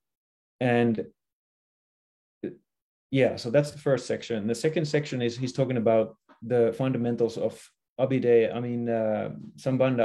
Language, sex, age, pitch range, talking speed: English, male, 30-49, 110-130 Hz, 130 wpm